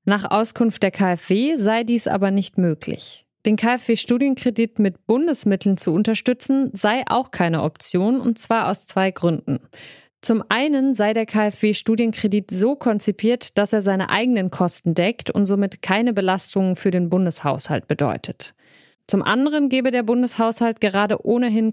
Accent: German